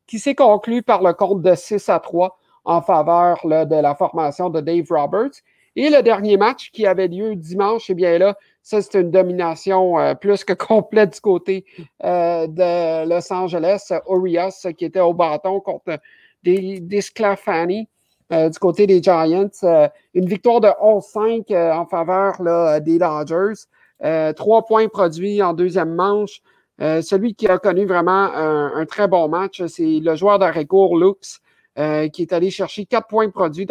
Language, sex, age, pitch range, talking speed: French, male, 50-69, 165-200 Hz, 180 wpm